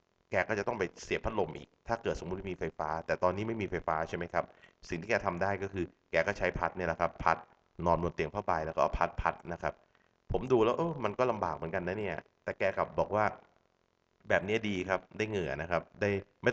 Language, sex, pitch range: Thai, male, 80-100 Hz